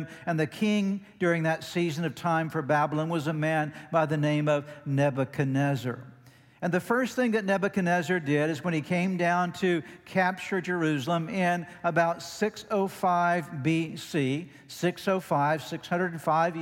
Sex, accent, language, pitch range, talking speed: male, American, English, 155-185 Hz, 140 wpm